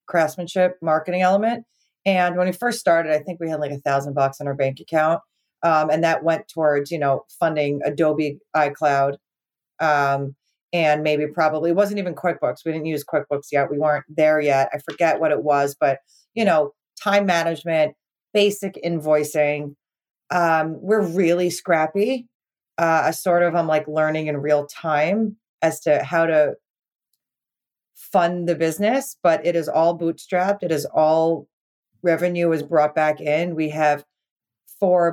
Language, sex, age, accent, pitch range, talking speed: English, female, 40-59, American, 150-175 Hz, 165 wpm